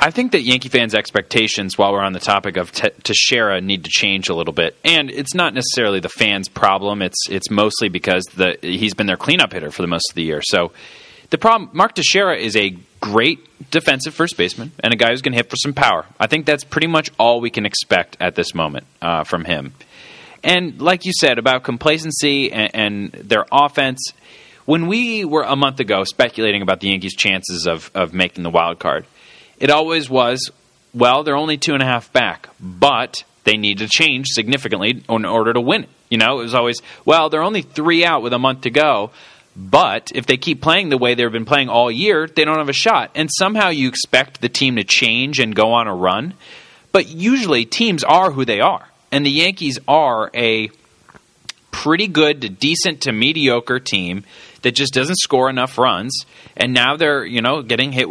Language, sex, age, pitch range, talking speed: English, male, 30-49, 110-155 Hz, 210 wpm